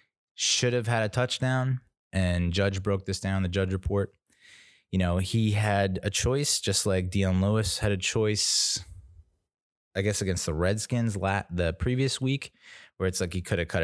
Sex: male